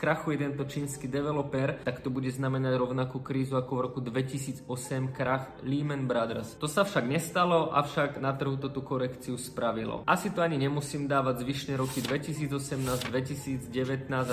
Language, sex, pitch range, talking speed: Czech, male, 130-150 Hz, 160 wpm